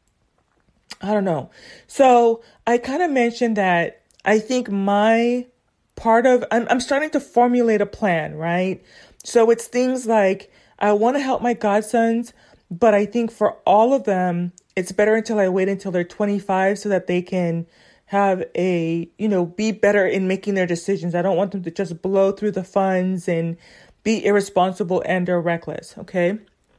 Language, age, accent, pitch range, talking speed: English, 30-49, American, 190-245 Hz, 170 wpm